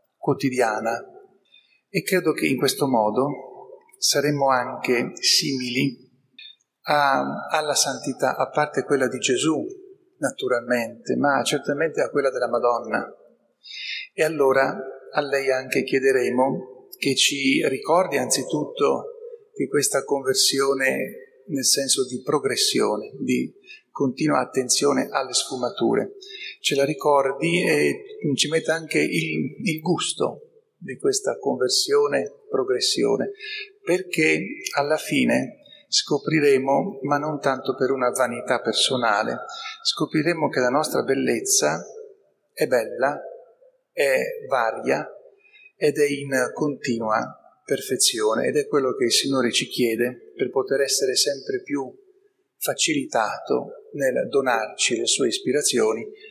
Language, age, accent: Italian, 40-59, native